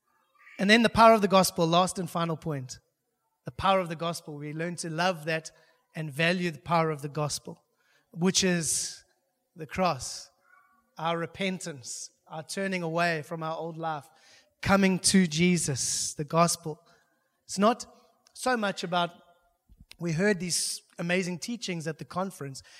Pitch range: 155-190 Hz